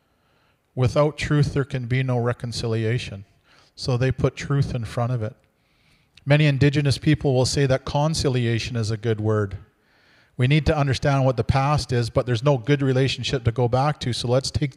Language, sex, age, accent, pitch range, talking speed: English, male, 40-59, American, 115-140 Hz, 185 wpm